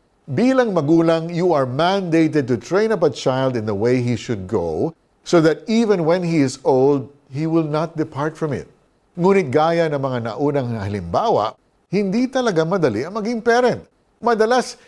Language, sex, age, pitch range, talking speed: Filipino, male, 50-69, 140-200 Hz, 170 wpm